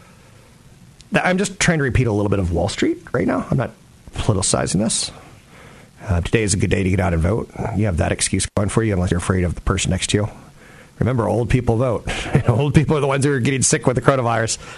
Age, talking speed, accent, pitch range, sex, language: 40-59, 245 wpm, American, 95-125 Hz, male, English